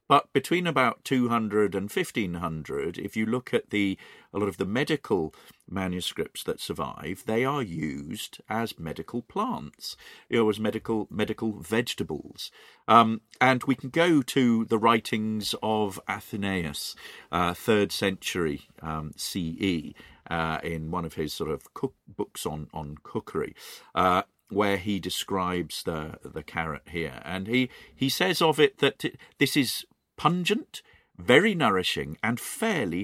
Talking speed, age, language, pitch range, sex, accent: 155 wpm, 40-59, English, 90-125 Hz, male, British